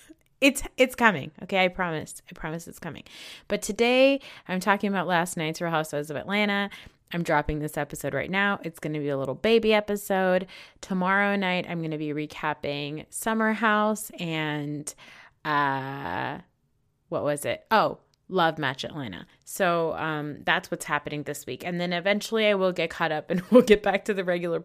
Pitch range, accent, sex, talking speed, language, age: 150-200 Hz, American, female, 180 wpm, English, 20-39